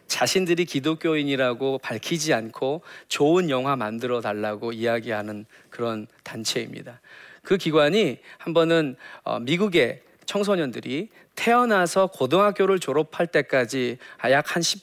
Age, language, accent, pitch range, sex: 40-59, Korean, native, 135-195 Hz, male